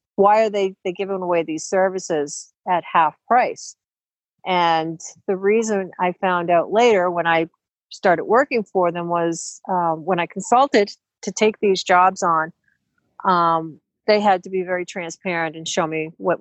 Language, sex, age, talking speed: English, female, 50-69, 165 wpm